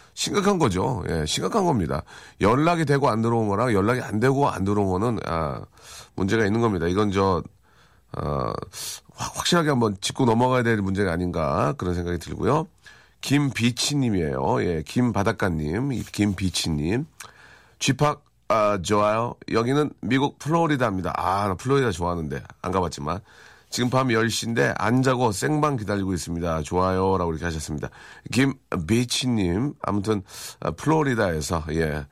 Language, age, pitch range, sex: Korean, 40-59, 95-125 Hz, male